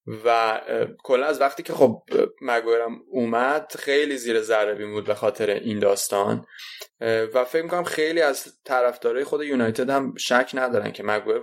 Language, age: Persian, 20-39